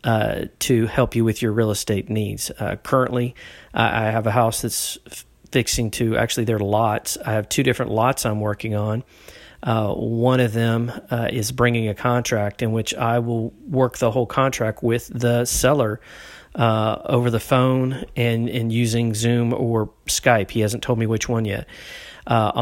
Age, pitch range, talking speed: 40-59, 115-125 Hz, 180 wpm